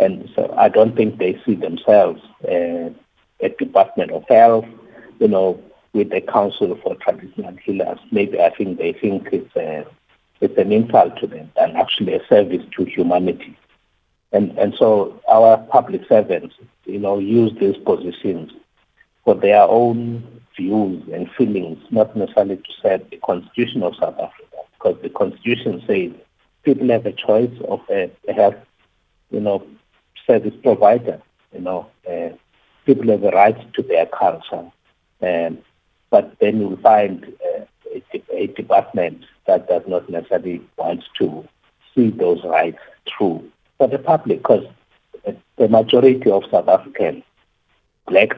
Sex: male